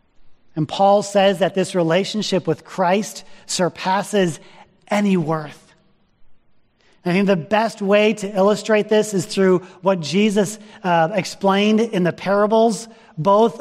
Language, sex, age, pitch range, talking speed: English, male, 40-59, 195-260 Hz, 130 wpm